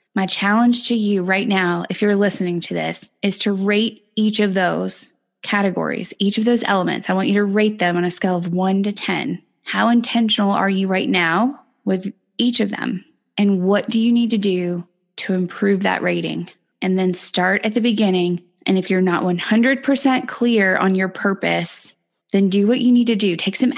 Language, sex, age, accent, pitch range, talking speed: English, female, 20-39, American, 185-215 Hz, 200 wpm